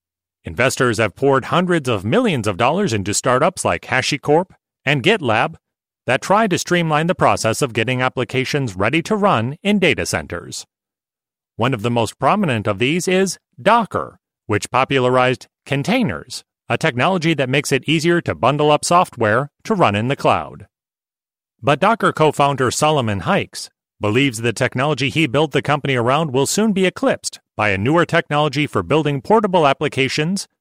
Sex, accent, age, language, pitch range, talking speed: male, American, 30-49, English, 120-165 Hz, 160 wpm